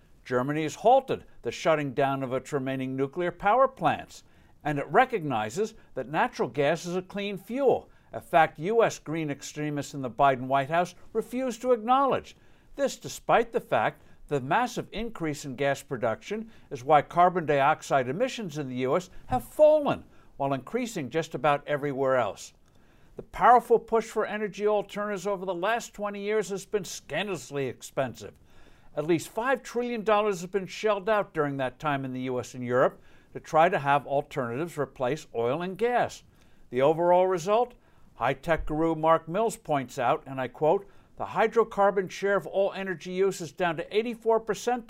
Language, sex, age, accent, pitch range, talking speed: English, male, 60-79, American, 140-210 Hz, 165 wpm